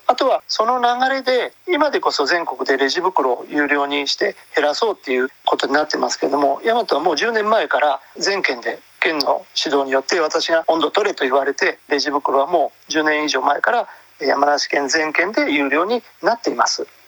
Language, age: Japanese, 40-59